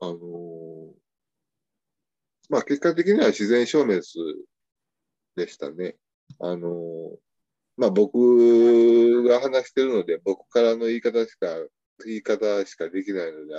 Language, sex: Japanese, male